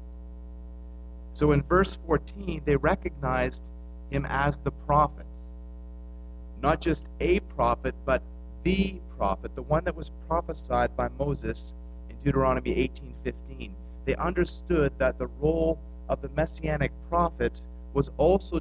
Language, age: English, 30-49